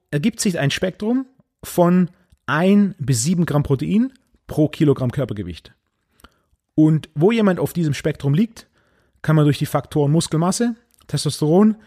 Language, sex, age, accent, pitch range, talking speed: German, male, 30-49, German, 130-180 Hz, 135 wpm